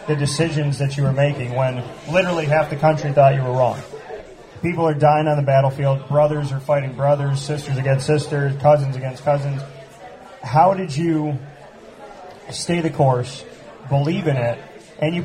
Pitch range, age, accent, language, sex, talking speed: 135-160 Hz, 30-49, American, English, male, 165 wpm